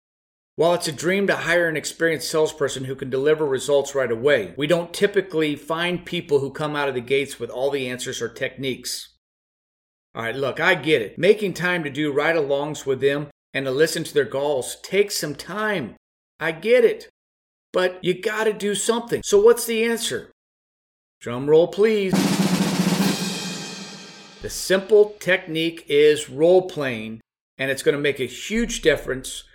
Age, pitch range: 50-69, 145-195 Hz